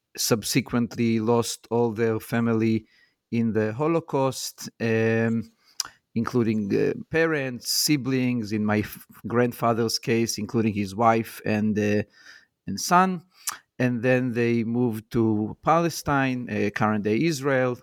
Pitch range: 110-125 Hz